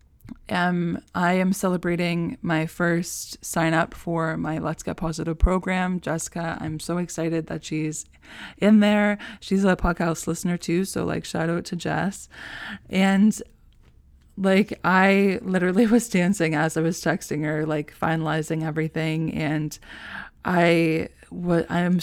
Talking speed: 140 wpm